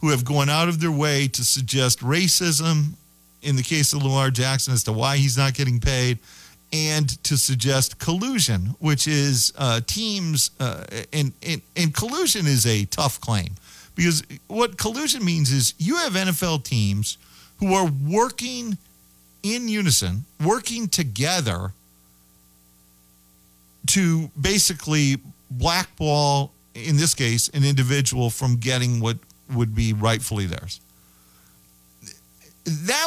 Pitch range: 110-155 Hz